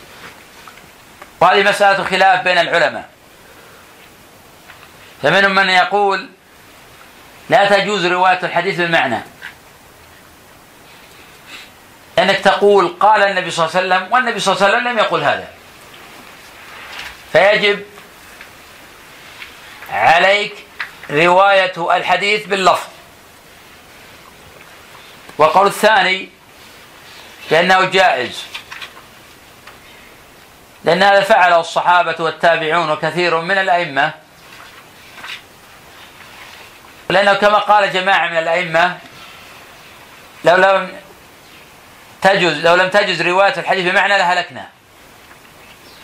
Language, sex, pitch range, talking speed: Arabic, male, 175-200 Hz, 80 wpm